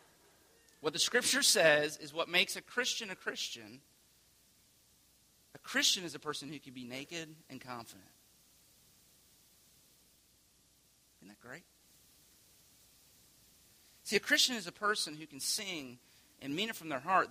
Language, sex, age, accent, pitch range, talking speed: English, male, 40-59, American, 130-170 Hz, 140 wpm